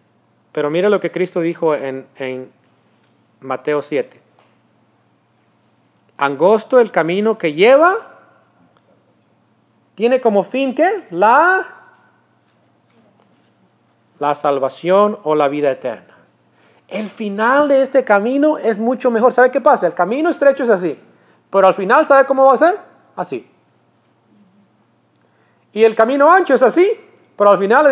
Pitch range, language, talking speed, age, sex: 145-220 Hz, English, 130 wpm, 40-59, male